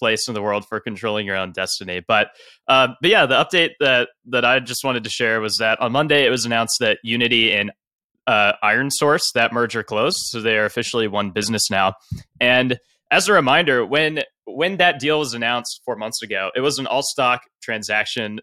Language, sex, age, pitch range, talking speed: English, male, 20-39, 110-130 Hz, 210 wpm